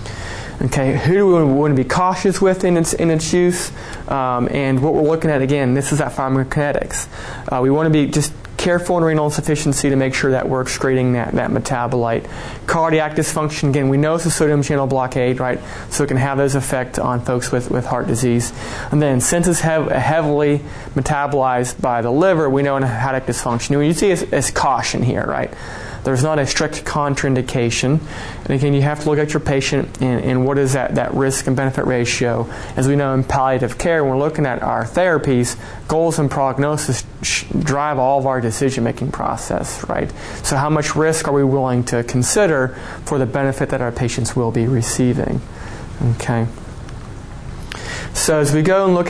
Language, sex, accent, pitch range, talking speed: English, male, American, 125-150 Hz, 195 wpm